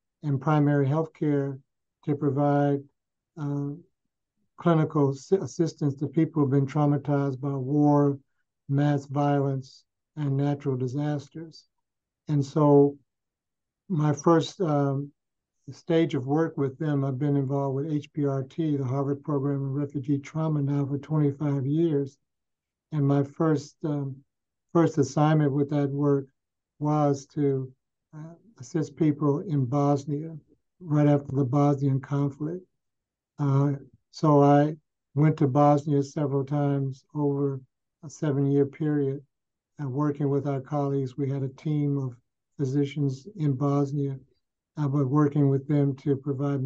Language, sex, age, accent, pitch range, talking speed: English, male, 60-79, American, 140-150 Hz, 125 wpm